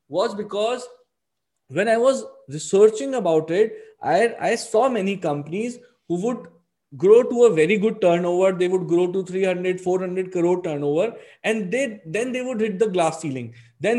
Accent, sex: Indian, male